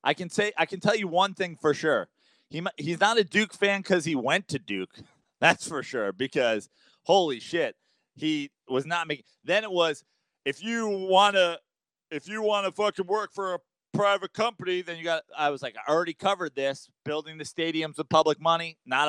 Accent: American